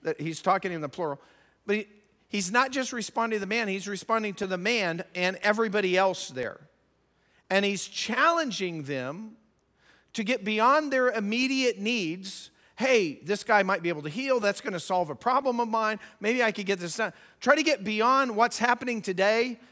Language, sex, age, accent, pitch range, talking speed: English, male, 40-59, American, 190-255 Hz, 190 wpm